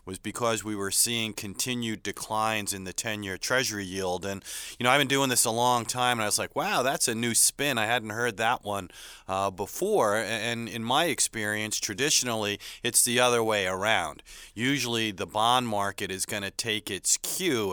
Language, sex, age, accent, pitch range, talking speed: English, male, 30-49, American, 105-130 Hz, 195 wpm